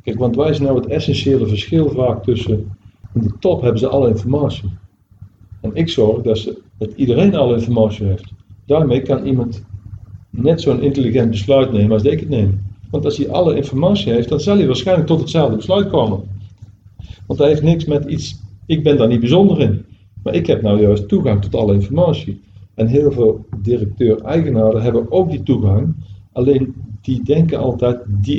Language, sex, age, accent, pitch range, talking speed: Dutch, male, 50-69, Dutch, 105-150 Hz, 180 wpm